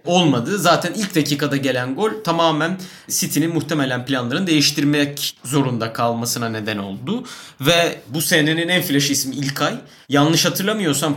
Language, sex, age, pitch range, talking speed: Turkish, male, 30-49, 140-185 Hz, 130 wpm